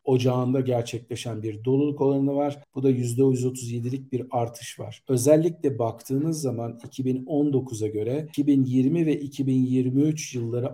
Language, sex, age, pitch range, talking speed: Turkish, male, 50-69, 120-140 Hz, 115 wpm